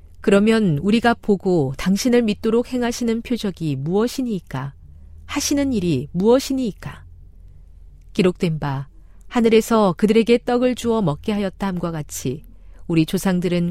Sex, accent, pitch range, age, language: female, native, 145-215 Hz, 40-59, Korean